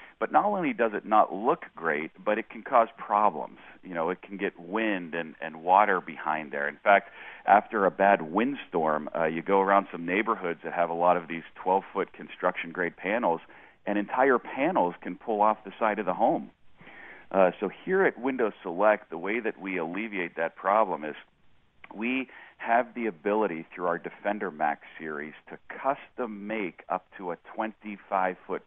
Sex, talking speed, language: male, 180 wpm, English